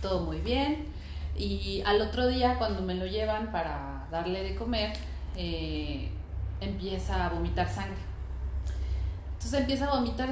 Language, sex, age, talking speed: Spanish, female, 30-49, 140 wpm